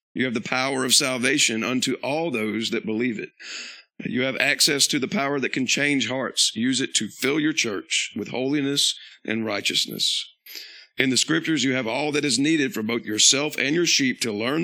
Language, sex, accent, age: English, male, American, 40-59